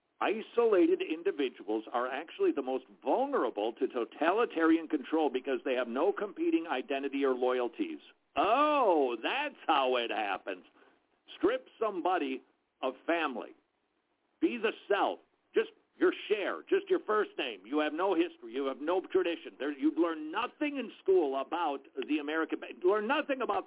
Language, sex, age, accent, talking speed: English, male, 50-69, American, 140 wpm